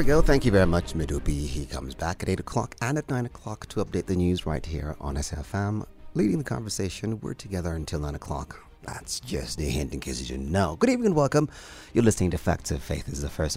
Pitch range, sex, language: 75-115 Hz, male, English